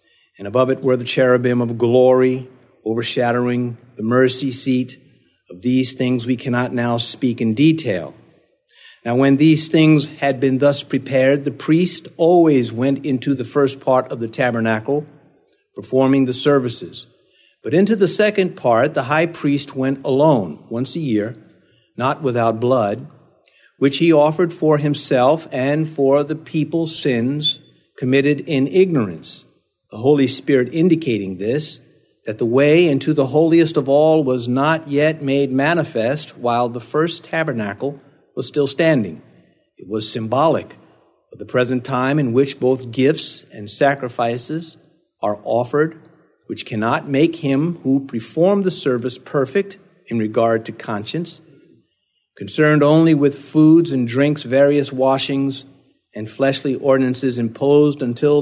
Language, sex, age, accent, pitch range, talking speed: English, male, 50-69, American, 125-155 Hz, 140 wpm